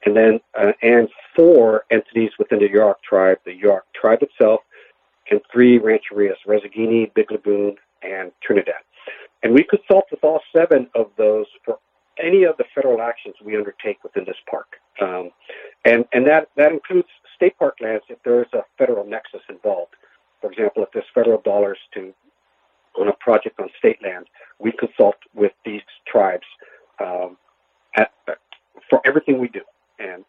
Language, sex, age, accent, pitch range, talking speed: English, male, 50-69, American, 110-165 Hz, 160 wpm